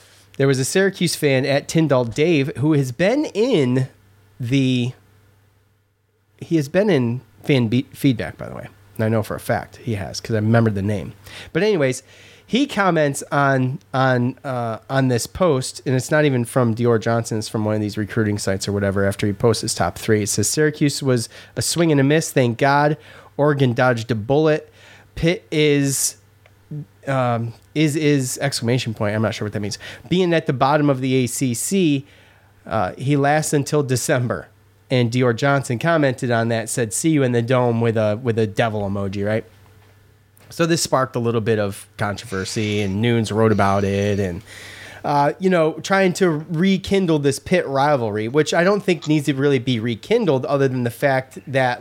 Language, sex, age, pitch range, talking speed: English, male, 30-49, 105-145 Hz, 190 wpm